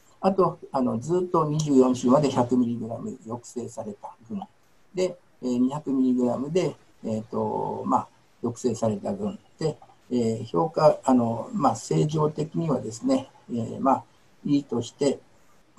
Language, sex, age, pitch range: Japanese, male, 60-79, 120-165 Hz